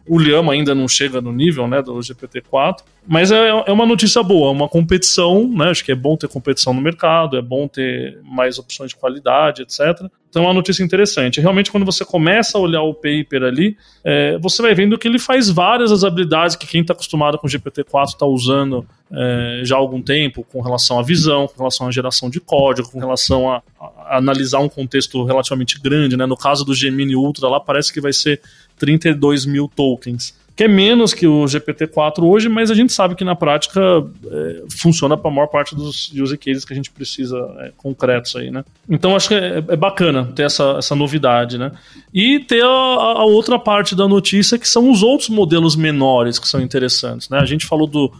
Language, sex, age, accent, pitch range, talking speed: Portuguese, male, 20-39, Brazilian, 135-185 Hz, 210 wpm